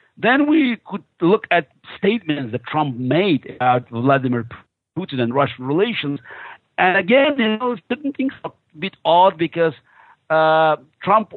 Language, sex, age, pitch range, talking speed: English, male, 50-69, 135-170 Hz, 150 wpm